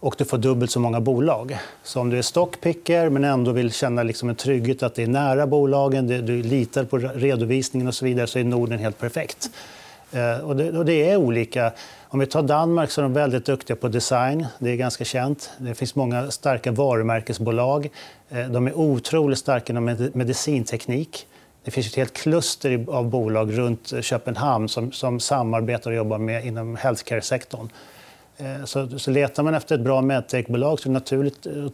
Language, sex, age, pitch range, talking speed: Swedish, male, 40-59, 120-140 Hz, 180 wpm